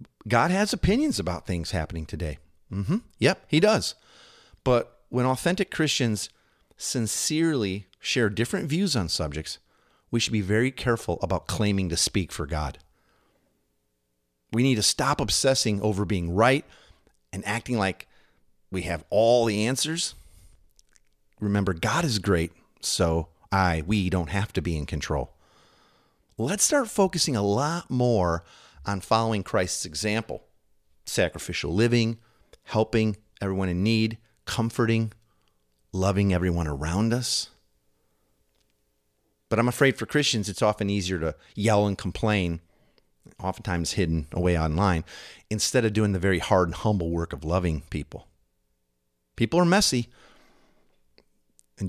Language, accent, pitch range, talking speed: English, American, 85-115 Hz, 130 wpm